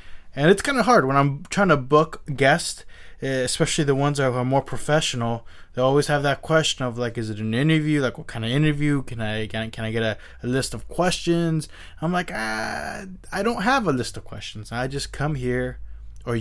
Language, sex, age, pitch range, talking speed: English, male, 20-39, 110-150 Hz, 215 wpm